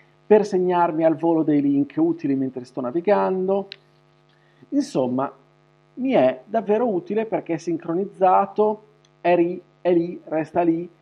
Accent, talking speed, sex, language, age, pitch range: native, 120 wpm, male, Italian, 40-59, 155-205 Hz